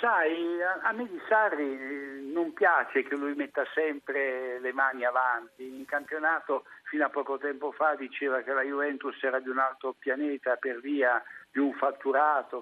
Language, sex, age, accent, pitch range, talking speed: Italian, male, 60-79, native, 135-205 Hz, 165 wpm